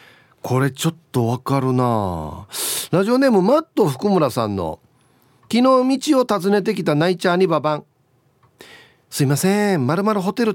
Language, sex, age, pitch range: Japanese, male, 40-59, 130-215 Hz